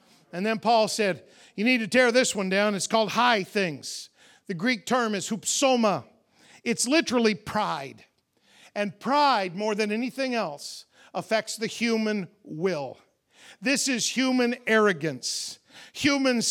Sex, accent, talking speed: male, American, 140 wpm